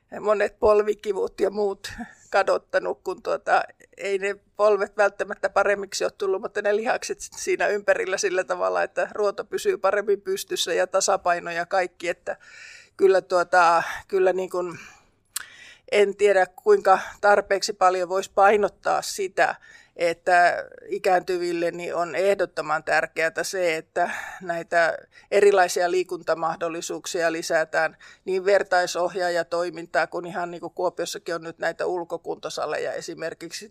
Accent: native